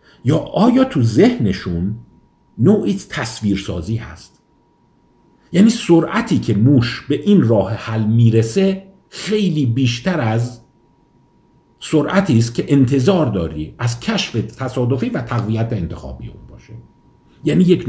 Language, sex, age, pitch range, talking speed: Persian, male, 50-69, 105-145 Hz, 115 wpm